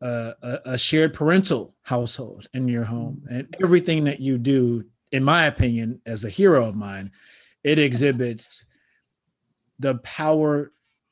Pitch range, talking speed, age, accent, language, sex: 120-150 Hz, 140 wpm, 30-49, American, English, male